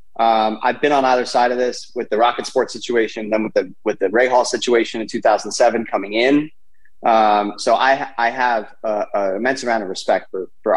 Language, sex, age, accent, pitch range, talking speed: English, male, 30-49, American, 110-135 Hz, 205 wpm